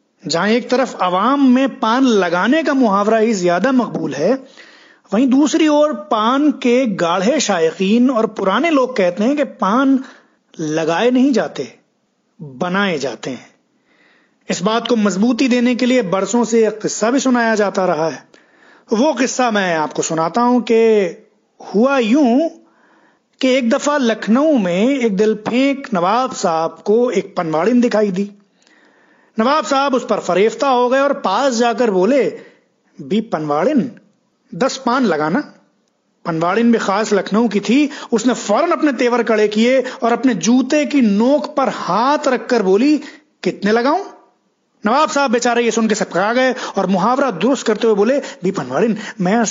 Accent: native